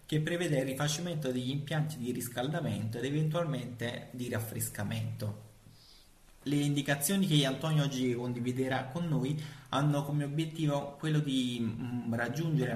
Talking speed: 120 wpm